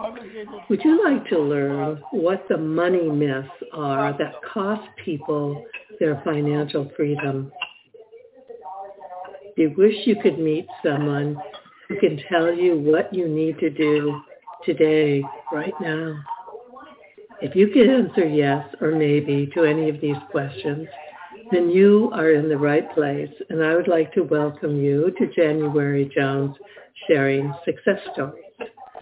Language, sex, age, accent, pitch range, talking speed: English, female, 60-79, American, 150-205 Hz, 140 wpm